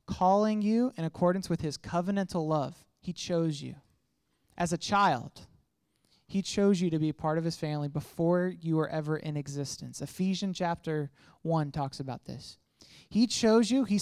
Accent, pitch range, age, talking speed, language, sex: American, 150-185 Hz, 20-39, 170 wpm, English, male